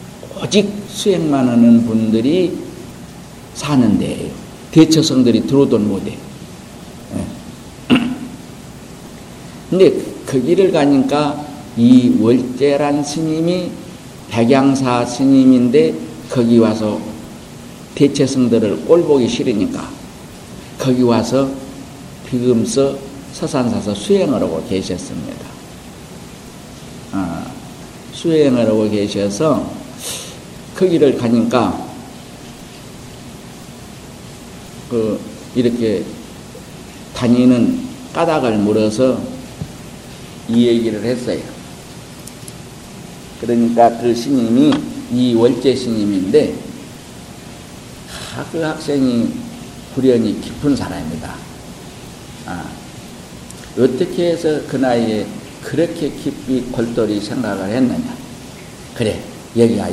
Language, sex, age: Korean, male, 50-69